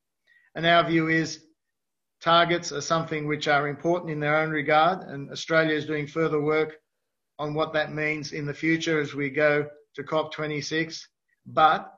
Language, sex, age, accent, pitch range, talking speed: English, male, 50-69, Australian, 150-165 Hz, 165 wpm